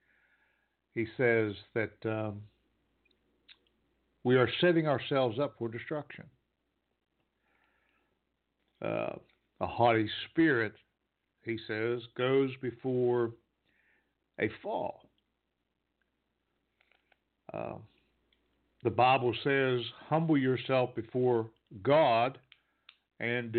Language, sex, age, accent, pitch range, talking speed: English, male, 60-79, American, 105-135 Hz, 75 wpm